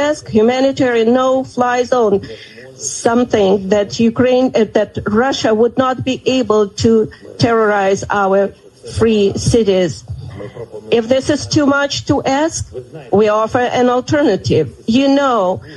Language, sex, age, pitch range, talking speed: English, female, 40-59, 195-250 Hz, 120 wpm